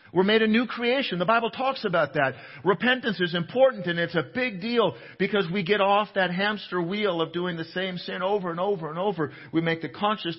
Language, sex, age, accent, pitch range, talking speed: English, male, 50-69, American, 125-170 Hz, 225 wpm